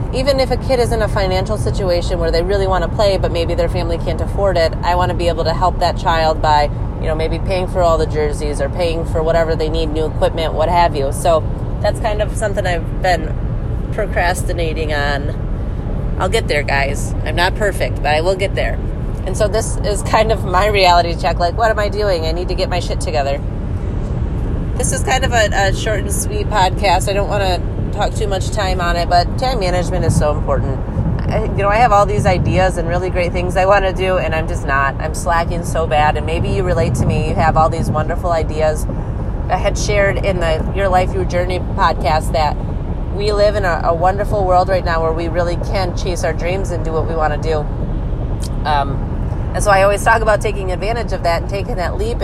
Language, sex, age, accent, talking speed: English, female, 30-49, American, 230 wpm